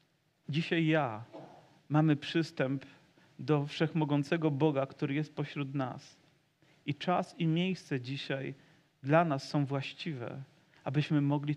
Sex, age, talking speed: male, 40-59, 115 wpm